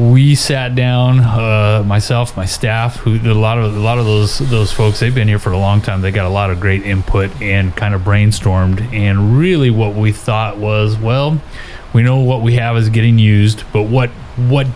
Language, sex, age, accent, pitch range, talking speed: English, male, 30-49, American, 100-115 Hz, 220 wpm